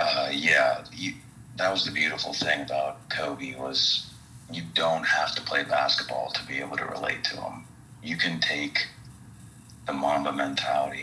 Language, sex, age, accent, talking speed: English, male, 40-59, American, 160 wpm